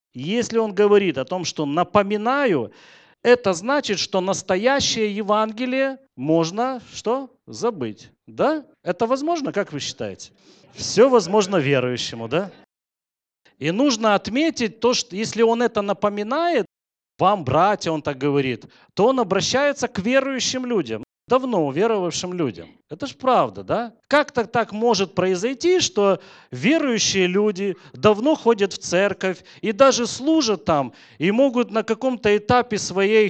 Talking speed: 135 wpm